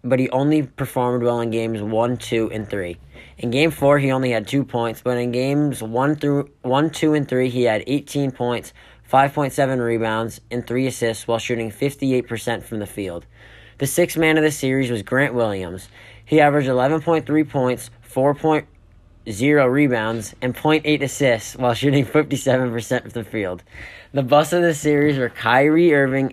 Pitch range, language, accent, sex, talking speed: 115-140 Hz, English, American, male, 175 wpm